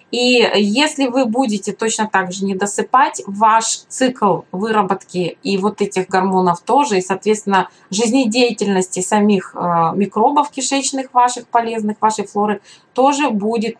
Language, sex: Russian, female